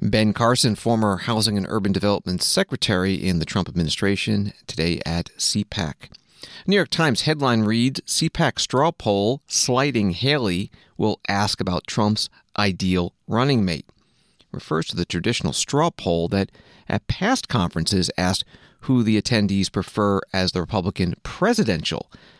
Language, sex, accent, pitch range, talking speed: English, male, American, 90-120 Hz, 135 wpm